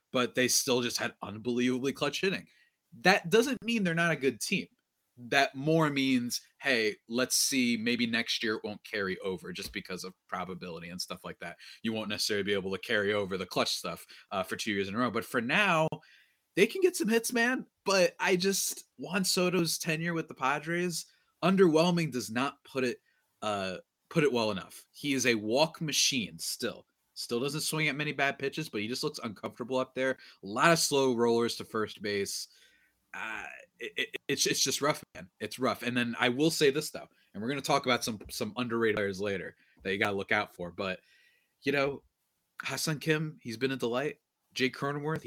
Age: 30-49